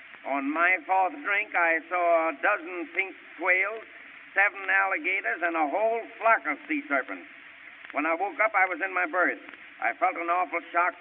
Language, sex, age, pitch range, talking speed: English, male, 60-79, 170-195 Hz, 180 wpm